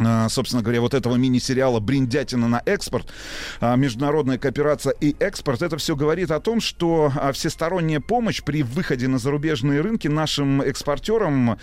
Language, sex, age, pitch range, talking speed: Russian, male, 30-49, 125-155 Hz, 140 wpm